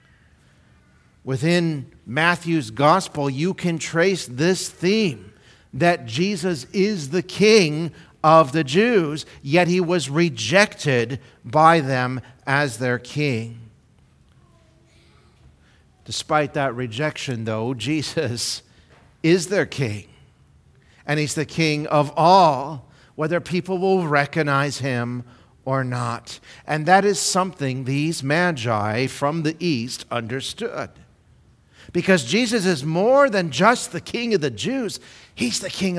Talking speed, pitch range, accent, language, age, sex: 115 wpm, 130-175 Hz, American, English, 50-69, male